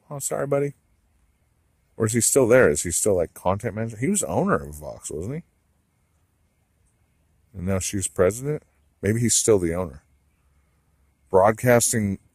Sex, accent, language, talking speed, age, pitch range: male, American, English, 150 wpm, 40-59, 80-100 Hz